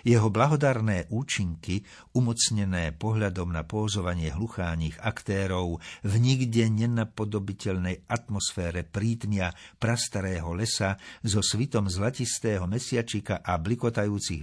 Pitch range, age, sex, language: 80-115 Hz, 60-79, male, Slovak